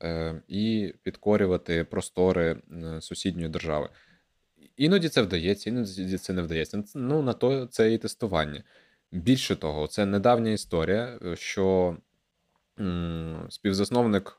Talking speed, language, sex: 105 wpm, Ukrainian, male